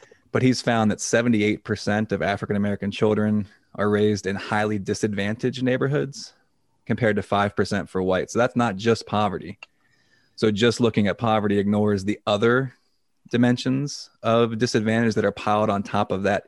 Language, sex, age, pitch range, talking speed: English, male, 20-39, 105-115 Hz, 160 wpm